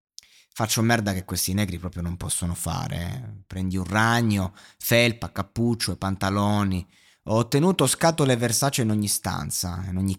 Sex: male